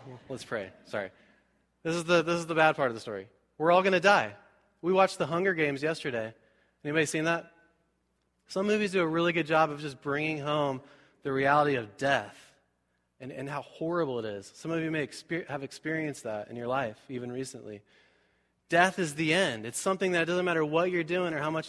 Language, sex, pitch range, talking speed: English, male, 130-165 Hz, 215 wpm